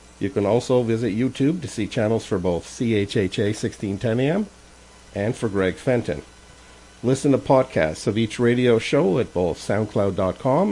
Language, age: English, 50-69